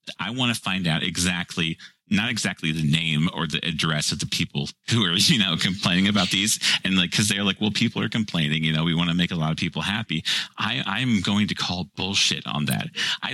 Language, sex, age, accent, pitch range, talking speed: English, male, 40-59, American, 80-90 Hz, 230 wpm